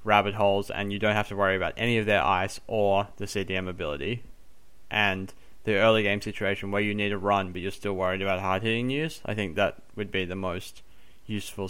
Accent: Australian